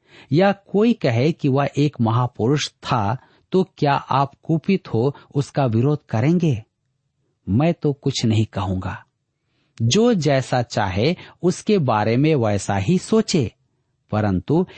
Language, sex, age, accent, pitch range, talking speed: Hindi, male, 50-69, native, 120-160 Hz, 125 wpm